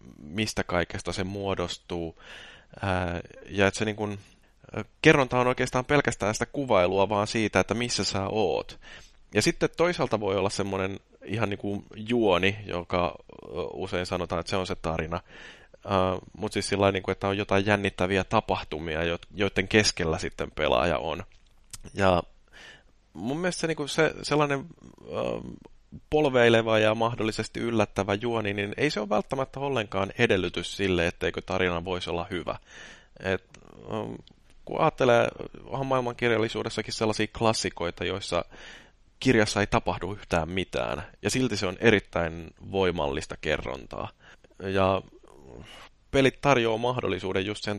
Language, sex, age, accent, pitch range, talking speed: Finnish, male, 30-49, native, 90-115 Hz, 125 wpm